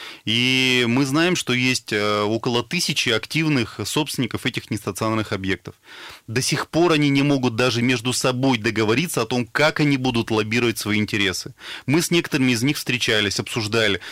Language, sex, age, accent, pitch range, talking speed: Russian, male, 30-49, native, 115-145 Hz, 155 wpm